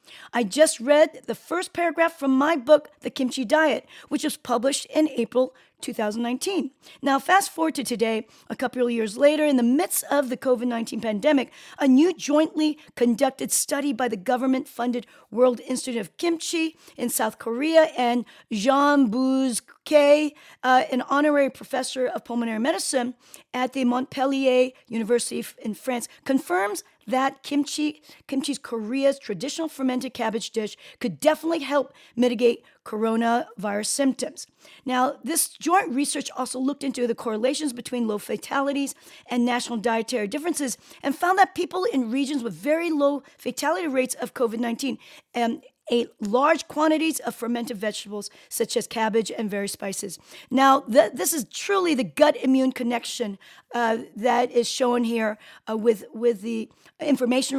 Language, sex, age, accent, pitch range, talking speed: English, female, 40-59, American, 235-290 Hz, 150 wpm